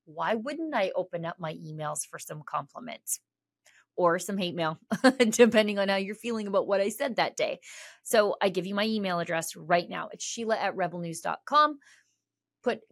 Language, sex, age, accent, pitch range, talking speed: English, female, 30-49, American, 180-230 Hz, 180 wpm